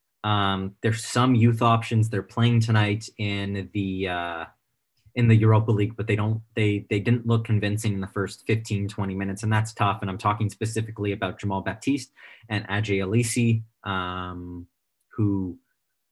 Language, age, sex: English, 30-49, male